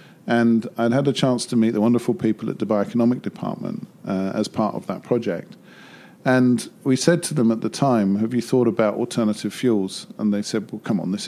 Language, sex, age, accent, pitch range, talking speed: English, male, 50-69, British, 105-125 Hz, 220 wpm